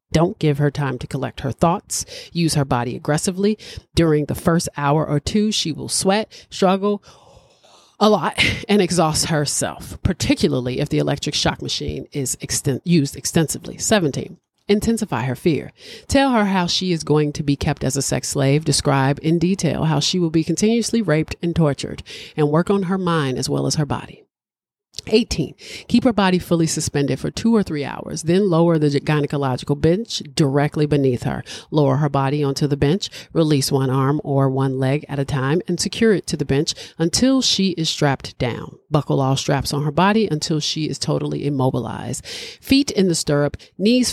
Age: 40-59